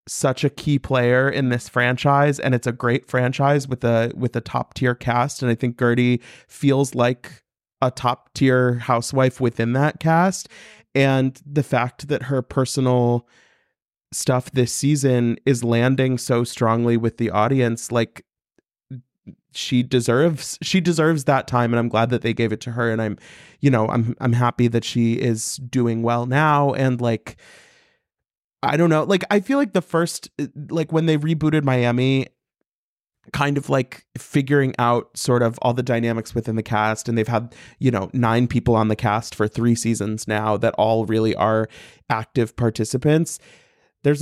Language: English